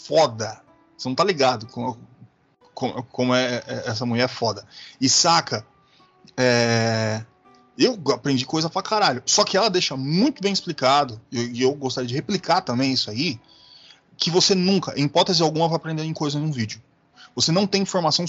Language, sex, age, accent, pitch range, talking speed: Portuguese, male, 20-39, Brazilian, 125-165 Hz, 175 wpm